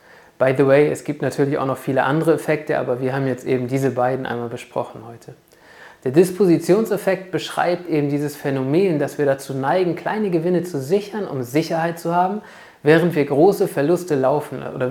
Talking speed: 180 wpm